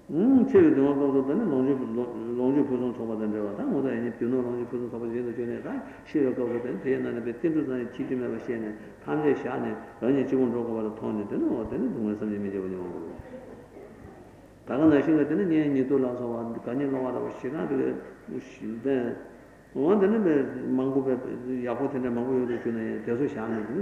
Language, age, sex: Italian, 60-79, male